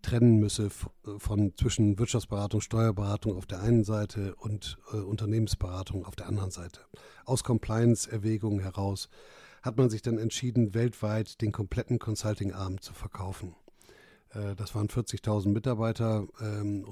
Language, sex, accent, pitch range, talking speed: German, male, German, 100-115 Hz, 135 wpm